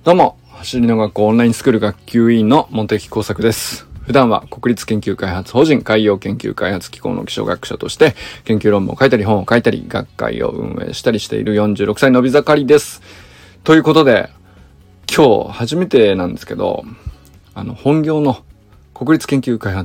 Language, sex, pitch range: Japanese, male, 100-130 Hz